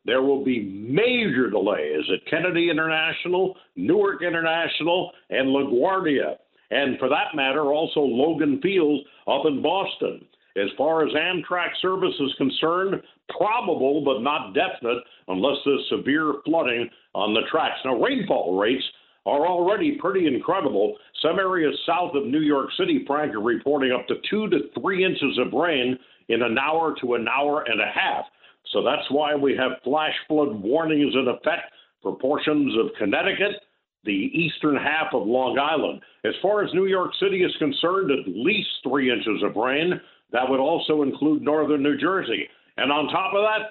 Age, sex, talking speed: 60-79, male, 165 wpm